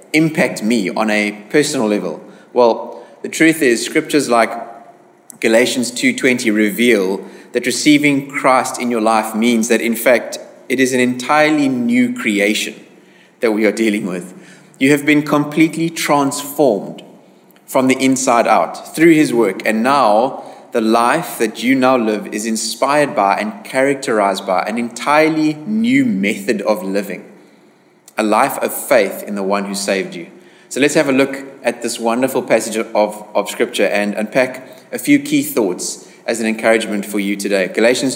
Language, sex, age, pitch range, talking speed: English, male, 20-39, 110-150 Hz, 160 wpm